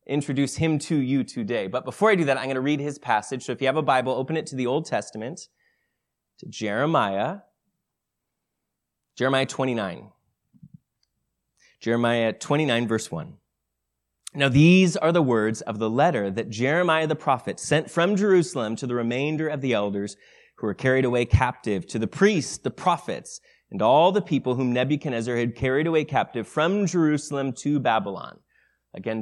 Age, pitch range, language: 20-39, 120-160 Hz, English